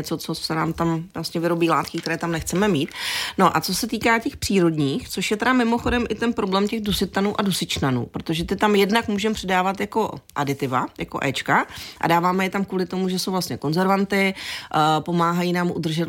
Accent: native